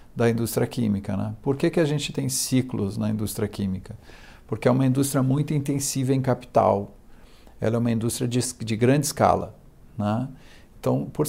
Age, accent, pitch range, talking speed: 50-69, Brazilian, 105-130 Hz, 175 wpm